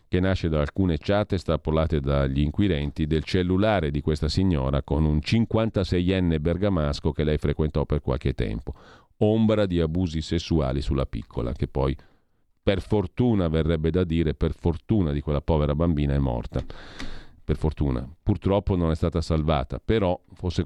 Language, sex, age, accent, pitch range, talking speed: Italian, male, 40-59, native, 80-100 Hz, 155 wpm